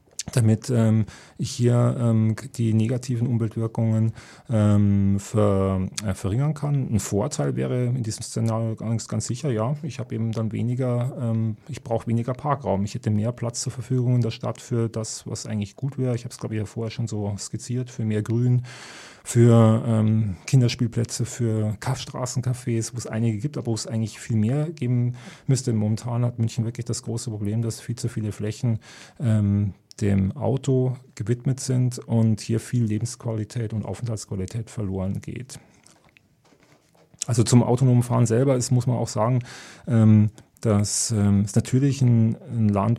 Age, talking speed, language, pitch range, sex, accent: 30-49, 160 wpm, German, 110-125 Hz, male, German